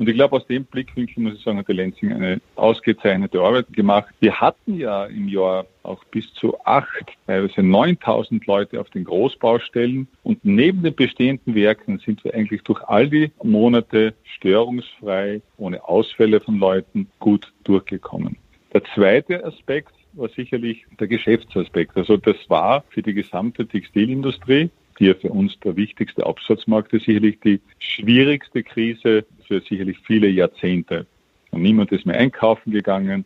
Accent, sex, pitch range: Austrian, male, 100-125 Hz